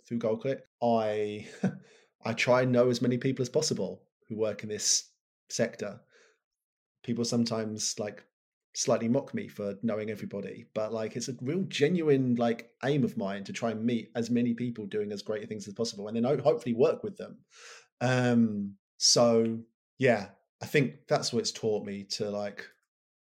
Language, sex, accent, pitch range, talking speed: English, male, British, 105-125 Hz, 170 wpm